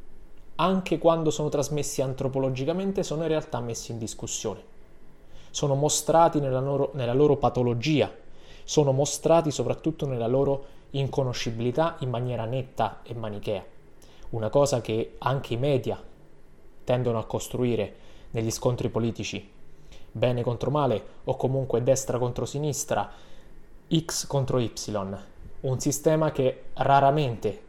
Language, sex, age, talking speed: Italian, male, 20-39, 120 wpm